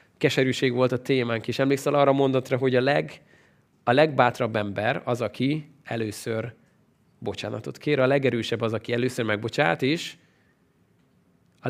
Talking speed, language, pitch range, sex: 135 wpm, Hungarian, 120-150 Hz, male